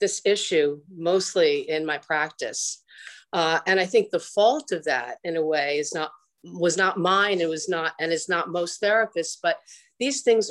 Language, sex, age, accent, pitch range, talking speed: English, female, 50-69, American, 160-195 Hz, 175 wpm